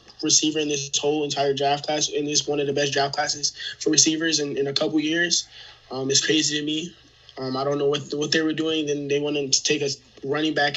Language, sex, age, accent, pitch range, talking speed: English, male, 20-39, American, 140-155 Hz, 245 wpm